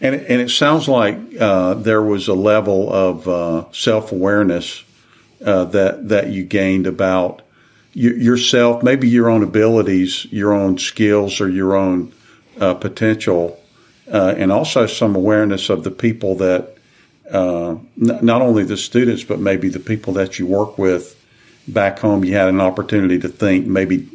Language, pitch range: English, 95-120 Hz